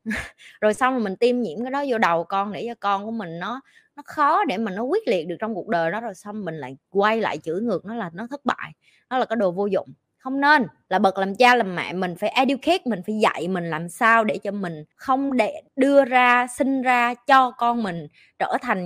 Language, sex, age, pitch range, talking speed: Vietnamese, female, 20-39, 190-260 Hz, 255 wpm